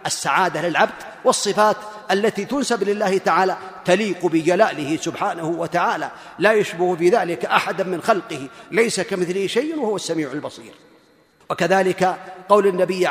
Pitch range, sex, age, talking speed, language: 175-235 Hz, male, 40-59, 125 wpm, Arabic